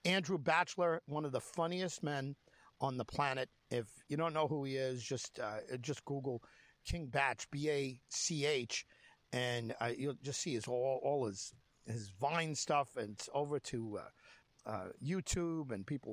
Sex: male